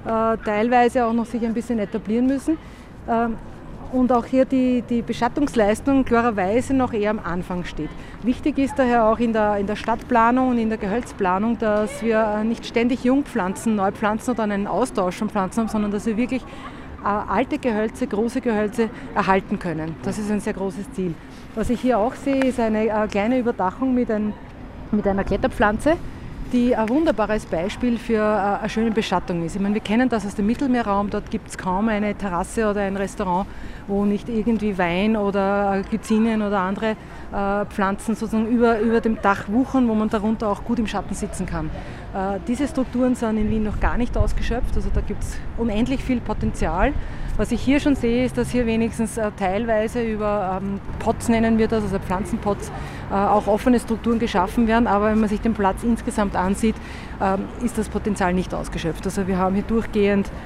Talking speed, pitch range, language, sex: 185 wpm, 200-235 Hz, German, female